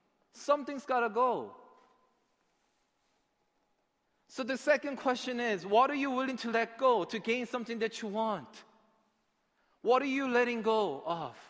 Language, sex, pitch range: Korean, male, 150-230 Hz